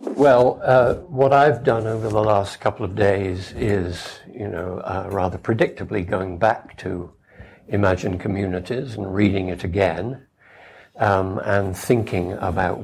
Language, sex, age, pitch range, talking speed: English, male, 60-79, 95-115 Hz, 140 wpm